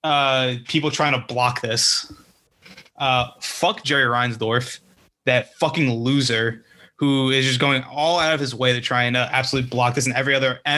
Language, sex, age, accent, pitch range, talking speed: English, male, 20-39, American, 125-150 Hz, 180 wpm